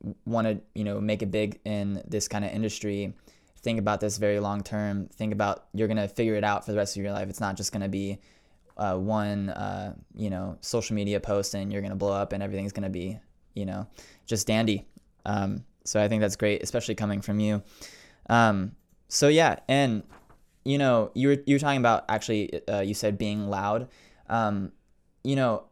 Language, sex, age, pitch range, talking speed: English, male, 20-39, 100-115 Hz, 200 wpm